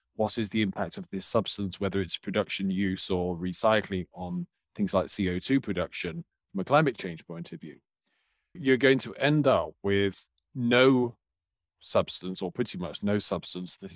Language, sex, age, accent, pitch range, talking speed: English, male, 30-49, British, 90-125 Hz, 170 wpm